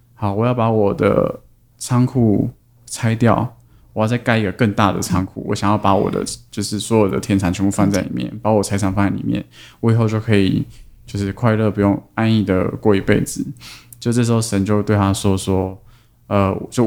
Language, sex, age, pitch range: Chinese, male, 20-39, 100-120 Hz